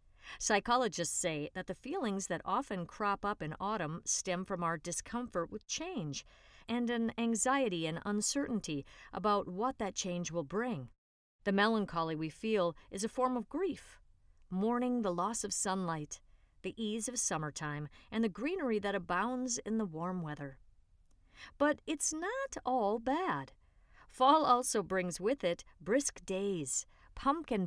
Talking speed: 145 wpm